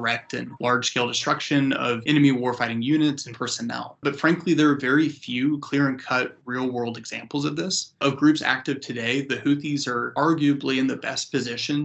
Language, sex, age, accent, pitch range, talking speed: English, male, 20-39, American, 120-145 Hz, 165 wpm